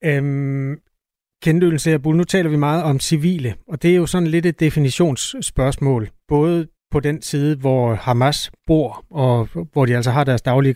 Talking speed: 155 wpm